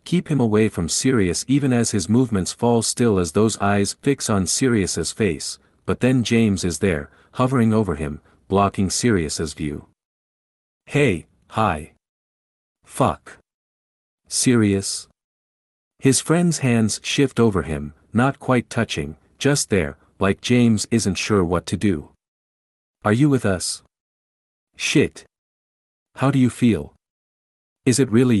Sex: male